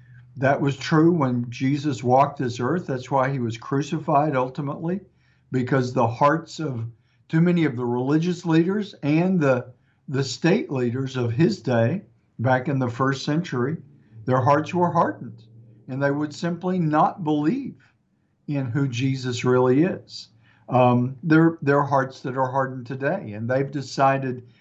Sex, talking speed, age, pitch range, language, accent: male, 155 wpm, 50-69, 120-145 Hz, English, American